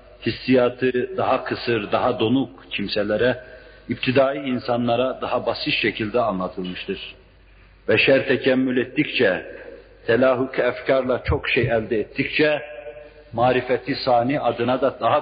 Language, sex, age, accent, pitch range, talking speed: Turkish, male, 50-69, native, 110-140 Hz, 105 wpm